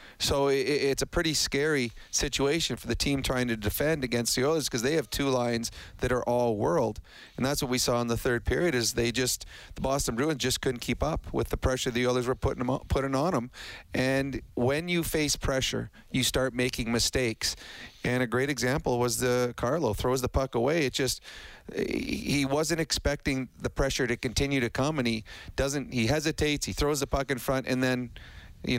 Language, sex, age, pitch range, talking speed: English, male, 30-49, 120-140 Hz, 200 wpm